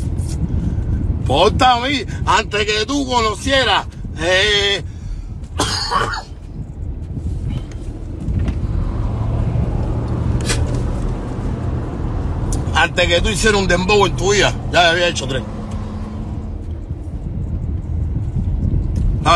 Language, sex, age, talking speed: Spanish, male, 60-79, 65 wpm